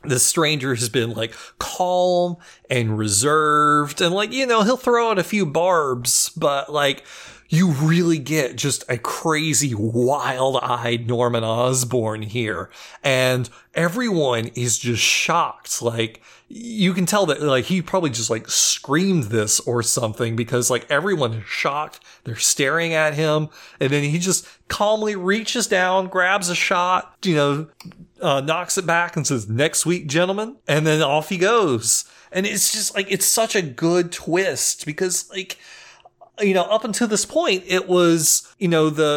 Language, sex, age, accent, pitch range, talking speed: English, male, 30-49, American, 125-180 Hz, 160 wpm